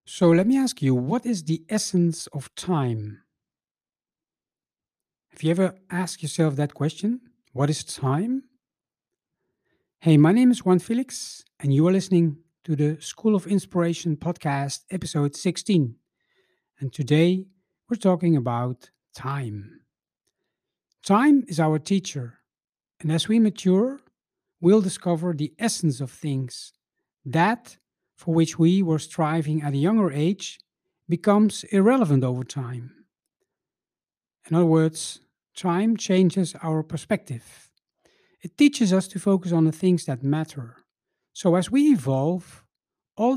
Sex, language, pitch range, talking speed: male, English, 150-200 Hz, 130 wpm